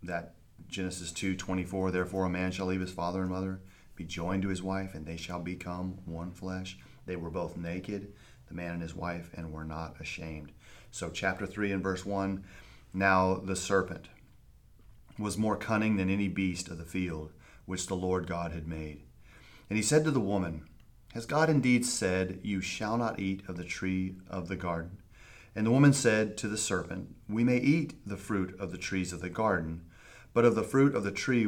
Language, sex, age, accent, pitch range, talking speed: English, male, 30-49, American, 90-110 Hz, 205 wpm